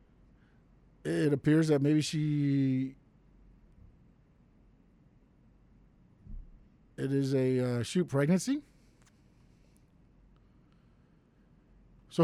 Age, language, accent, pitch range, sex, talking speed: 50-69, English, American, 135-175 Hz, male, 60 wpm